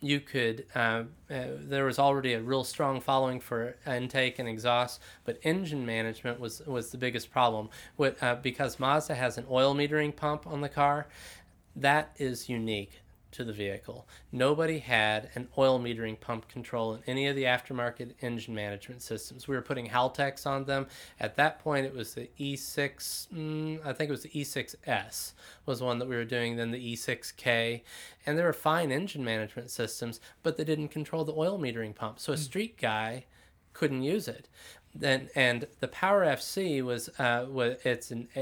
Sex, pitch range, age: male, 120-150 Hz, 20-39